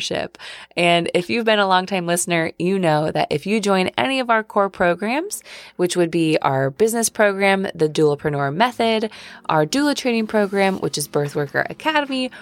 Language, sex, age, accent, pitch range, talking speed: English, female, 20-39, American, 150-205 Hz, 175 wpm